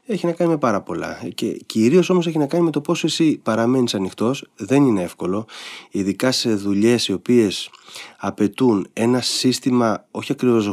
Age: 30-49